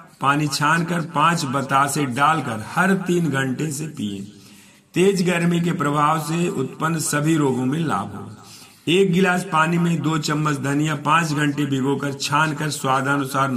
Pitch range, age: 135-170 Hz, 50-69